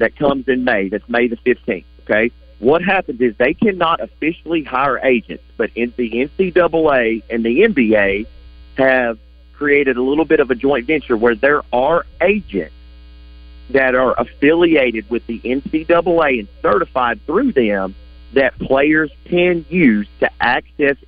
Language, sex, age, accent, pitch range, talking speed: English, male, 40-59, American, 95-140 Hz, 150 wpm